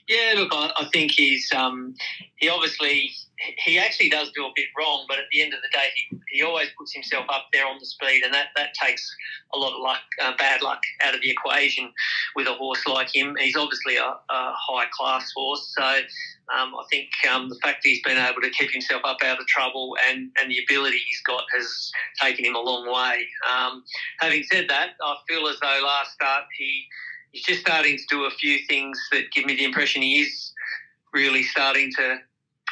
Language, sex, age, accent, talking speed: English, male, 40-59, Australian, 220 wpm